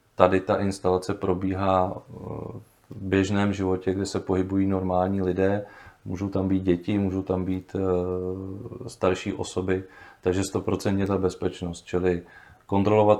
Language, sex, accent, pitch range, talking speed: Czech, male, native, 90-95 Hz, 125 wpm